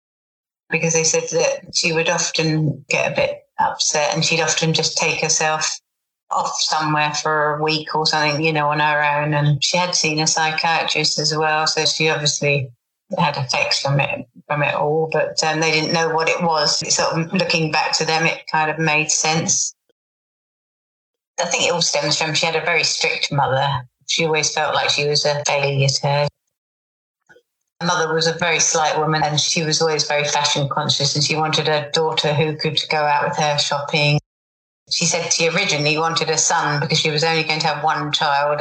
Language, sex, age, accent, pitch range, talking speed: English, female, 30-49, British, 150-160 Hz, 200 wpm